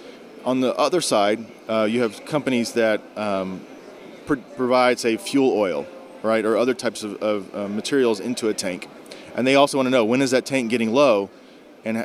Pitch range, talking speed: 110-135 Hz, 195 wpm